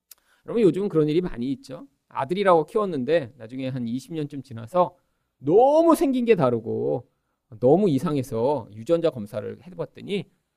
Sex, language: male, Korean